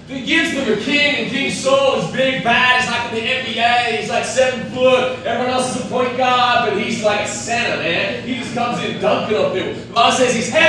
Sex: male